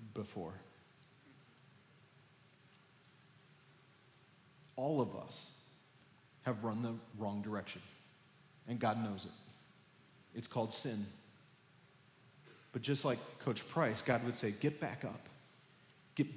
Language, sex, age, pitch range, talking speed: English, male, 40-59, 130-160 Hz, 105 wpm